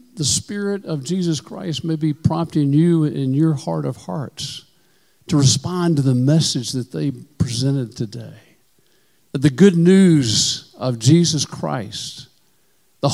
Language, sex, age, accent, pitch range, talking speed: English, male, 50-69, American, 140-175 Hz, 140 wpm